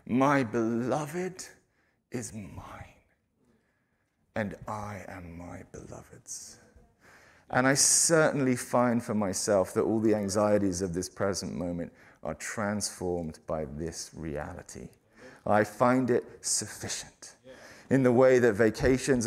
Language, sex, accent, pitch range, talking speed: English, male, British, 100-130 Hz, 115 wpm